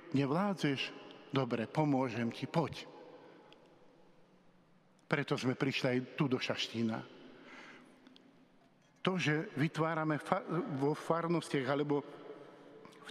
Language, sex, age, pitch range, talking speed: Slovak, male, 50-69, 140-175 Hz, 85 wpm